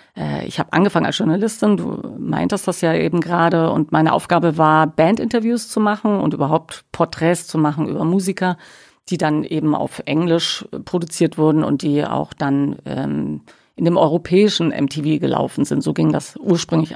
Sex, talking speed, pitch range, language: female, 165 wpm, 155-185 Hz, German